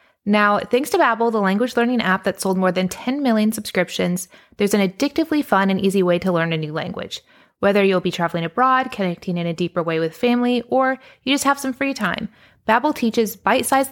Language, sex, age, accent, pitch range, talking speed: English, female, 20-39, American, 180-230 Hz, 210 wpm